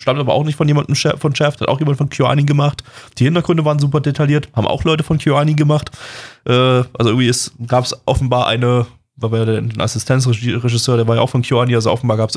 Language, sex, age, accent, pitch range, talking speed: German, male, 20-39, German, 110-125 Hz, 230 wpm